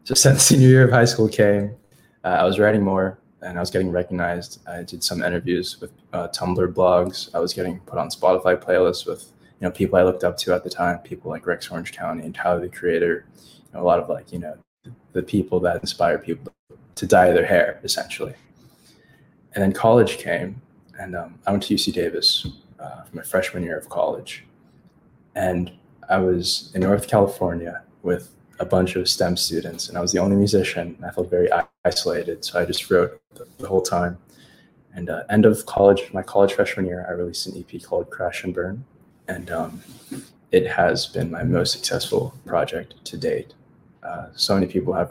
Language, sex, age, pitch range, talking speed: English, male, 20-39, 90-115 Hz, 200 wpm